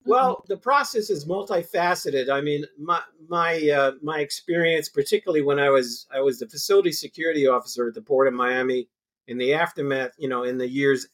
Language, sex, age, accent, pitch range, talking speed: English, male, 50-69, American, 130-155 Hz, 190 wpm